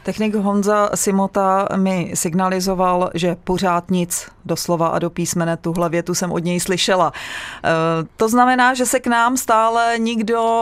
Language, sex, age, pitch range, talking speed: Czech, female, 30-49, 170-205 Hz, 145 wpm